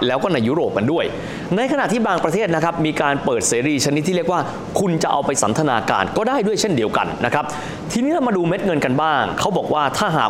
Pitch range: 130-180 Hz